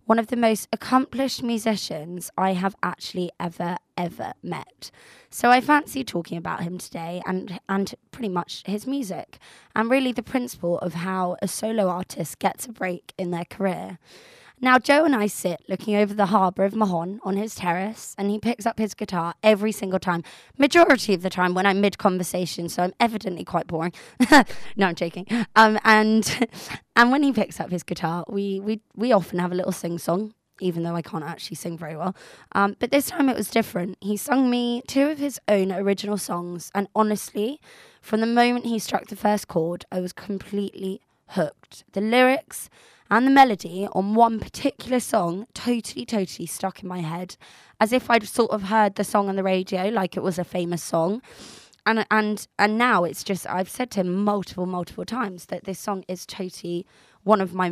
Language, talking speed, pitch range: English, 195 wpm, 180-225 Hz